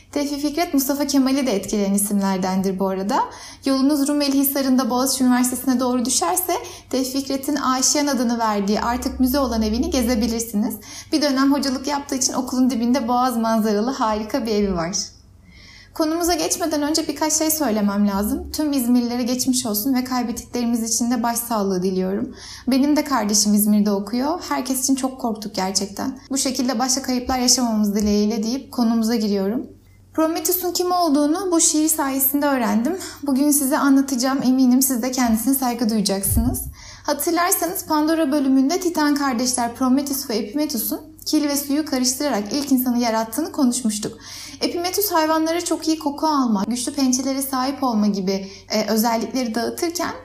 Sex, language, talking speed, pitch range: female, Turkish, 145 wpm, 230-290 Hz